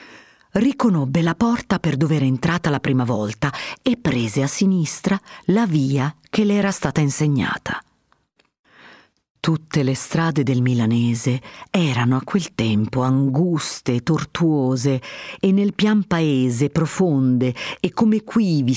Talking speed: 130 wpm